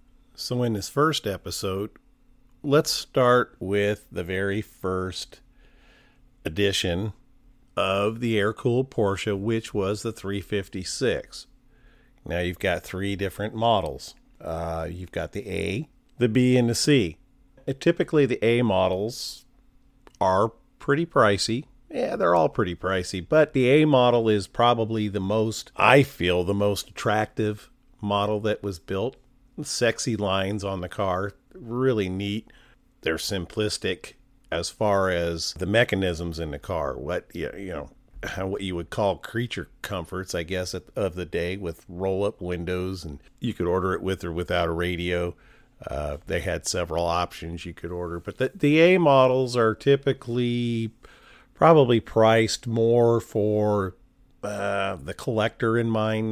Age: 40-59